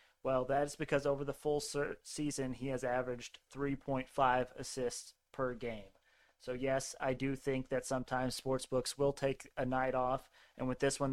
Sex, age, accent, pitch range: male, 30-49, American, 125-145 Hz